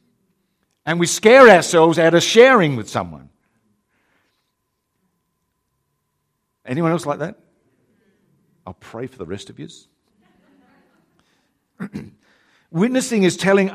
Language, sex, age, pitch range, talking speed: English, male, 50-69, 125-205 Hz, 100 wpm